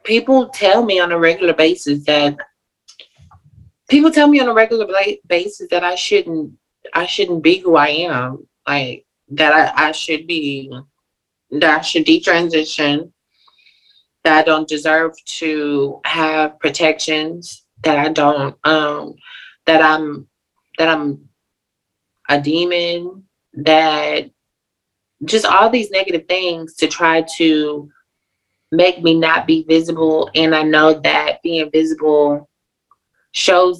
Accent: American